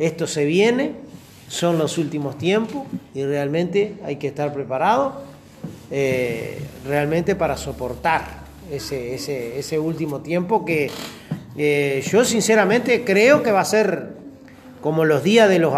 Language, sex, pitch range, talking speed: Spanish, male, 150-205 Hz, 135 wpm